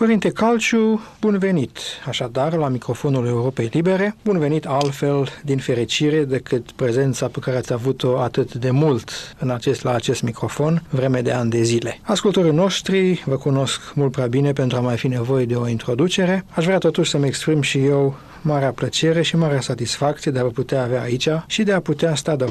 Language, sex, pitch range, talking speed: Romanian, male, 125-155 Hz, 190 wpm